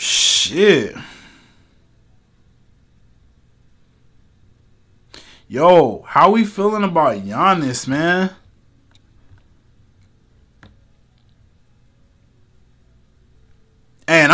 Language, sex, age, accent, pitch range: English, male, 20-39, American, 115-165 Hz